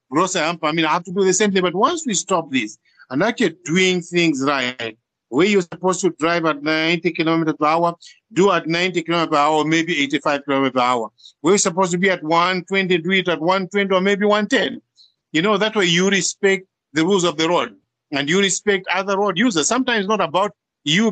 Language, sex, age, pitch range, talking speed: English, male, 50-69, 150-195 Hz, 220 wpm